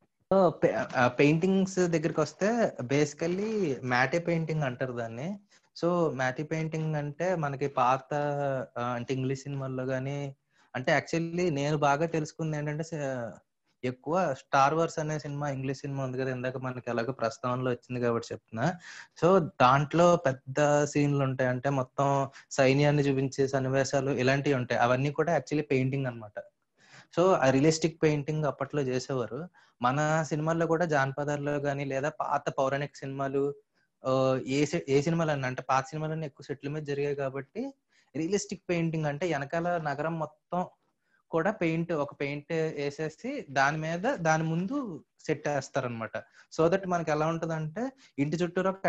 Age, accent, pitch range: 20-39, native, 135-165 Hz